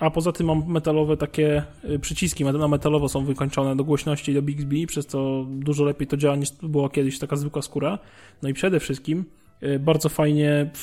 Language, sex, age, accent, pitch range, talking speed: Polish, male, 20-39, native, 140-155 Hz, 190 wpm